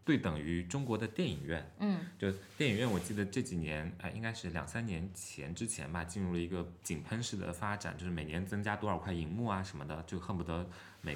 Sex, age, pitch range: male, 20-39, 85-100 Hz